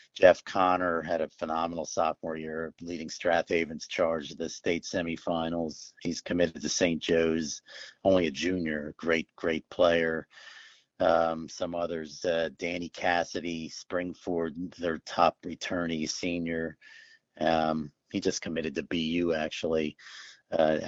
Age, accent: 50-69, American